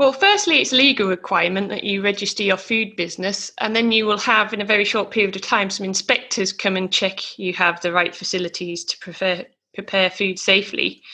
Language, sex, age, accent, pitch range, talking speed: English, female, 20-39, British, 185-240 Hz, 205 wpm